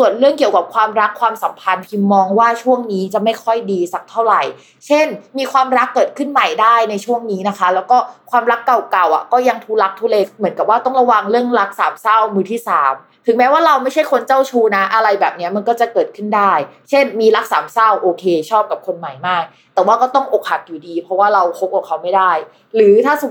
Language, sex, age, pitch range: Thai, female, 20-39, 185-245 Hz